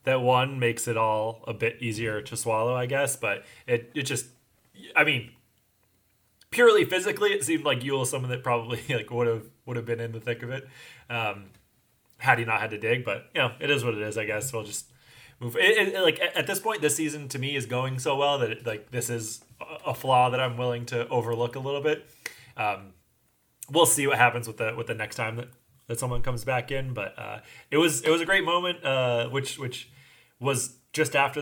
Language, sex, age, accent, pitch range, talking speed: English, male, 20-39, American, 115-140 Hz, 230 wpm